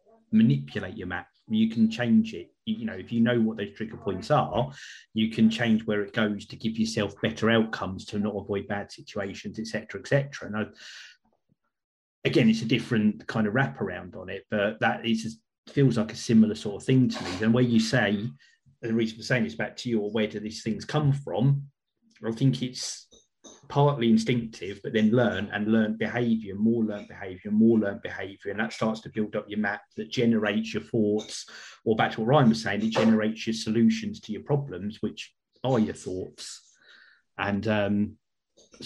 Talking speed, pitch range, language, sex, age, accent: 195 wpm, 105-125 Hz, English, male, 30-49, British